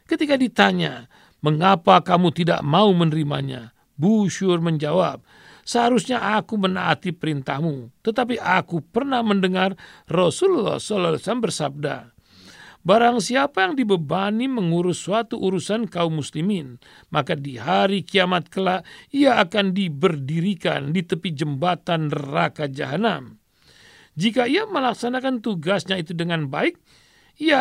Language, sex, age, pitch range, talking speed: Indonesian, male, 50-69, 155-215 Hz, 105 wpm